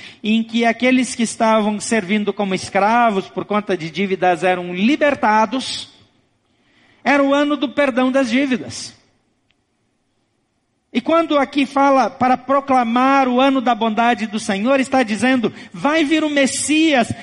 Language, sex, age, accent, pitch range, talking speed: Portuguese, male, 50-69, Brazilian, 195-260 Hz, 135 wpm